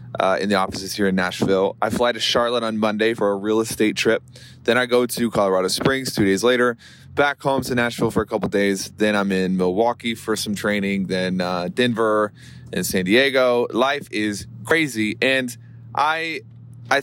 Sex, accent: male, American